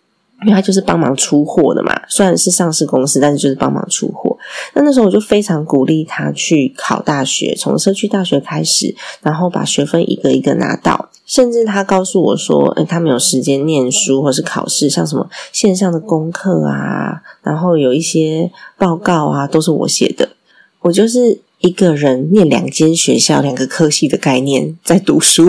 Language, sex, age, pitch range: Chinese, female, 20-39, 145-195 Hz